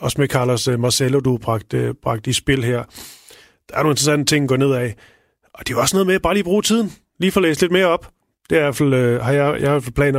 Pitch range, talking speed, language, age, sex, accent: 130-160 Hz, 275 wpm, Danish, 30-49, male, native